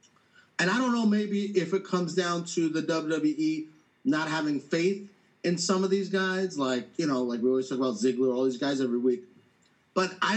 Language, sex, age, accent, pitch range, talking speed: English, male, 30-49, American, 155-220 Hz, 210 wpm